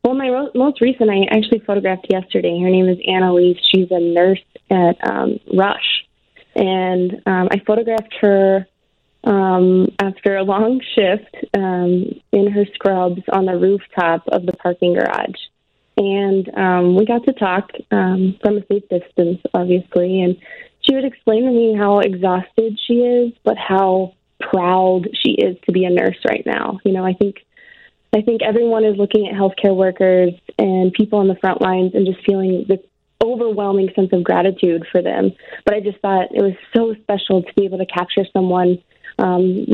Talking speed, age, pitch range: 175 wpm, 20-39, 185-215 Hz